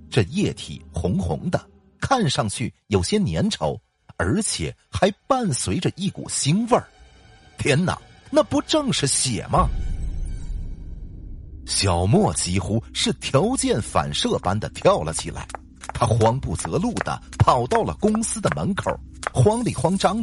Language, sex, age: Chinese, male, 50-69